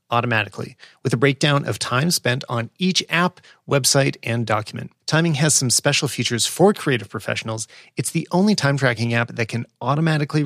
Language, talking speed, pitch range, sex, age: English, 170 wpm, 115-145 Hz, male, 30-49